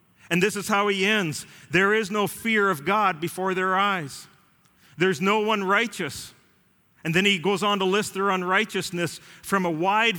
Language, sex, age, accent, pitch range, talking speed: English, male, 40-59, American, 155-200 Hz, 185 wpm